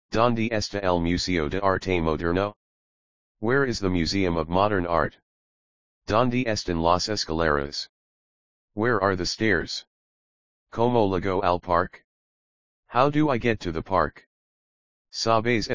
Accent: American